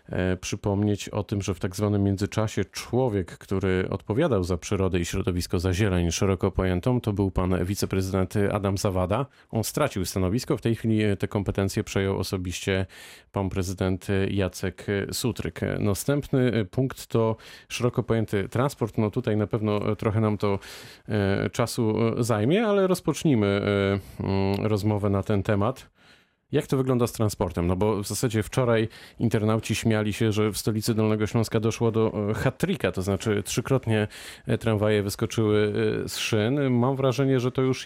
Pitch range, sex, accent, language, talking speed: 100-120 Hz, male, native, Polish, 145 wpm